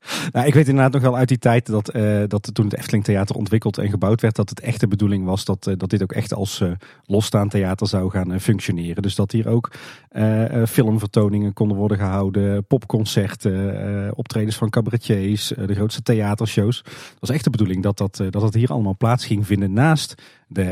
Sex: male